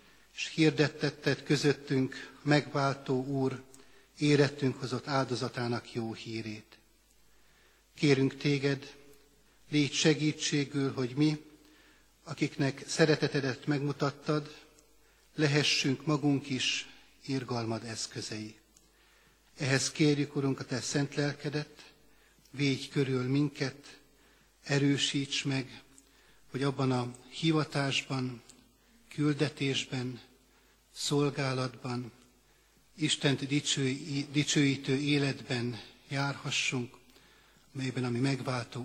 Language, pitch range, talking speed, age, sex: Hungarian, 125-145 Hz, 75 wpm, 60-79, male